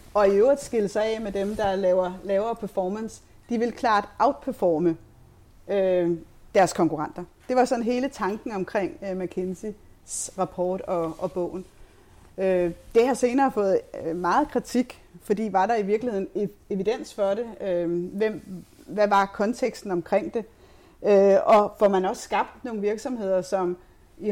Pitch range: 185-225 Hz